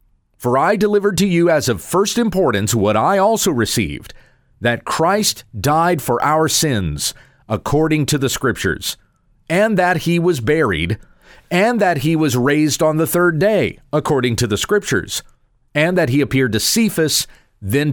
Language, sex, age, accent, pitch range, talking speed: English, male, 40-59, American, 115-165 Hz, 160 wpm